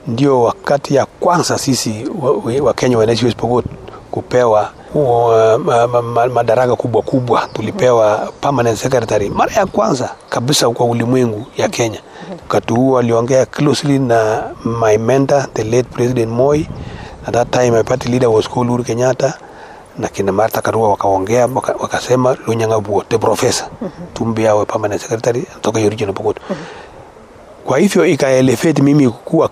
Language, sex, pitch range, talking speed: Swahili, male, 115-140 Hz, 115 wpm